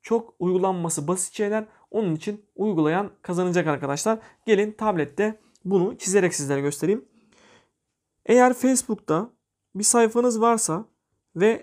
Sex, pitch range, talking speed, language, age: male, 175-225 Hz, 110 wpm, Turkish, 40-59